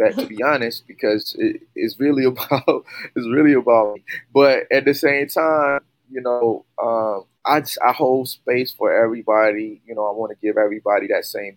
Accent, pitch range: American, 110-140 Hz